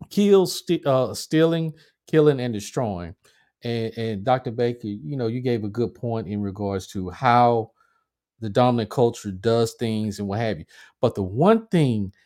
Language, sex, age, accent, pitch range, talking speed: English, male, 50-69, American, 110-140 Hz, 170 wpm